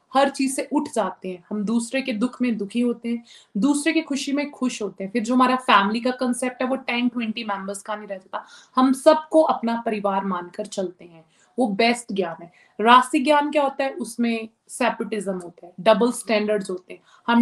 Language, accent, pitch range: Hindi, native, 205-255 Hz